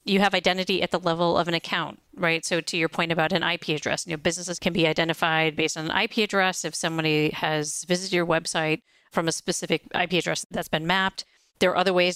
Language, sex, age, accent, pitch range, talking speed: English, female, 40-59, American, 160-190 Hz, 230 wpm